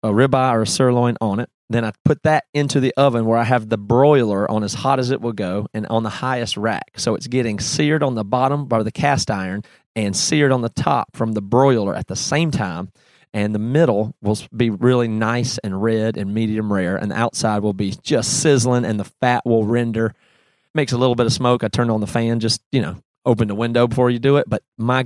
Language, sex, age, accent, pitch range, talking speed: English, male, 30-49, American, 110-140 Hz, 240 wpm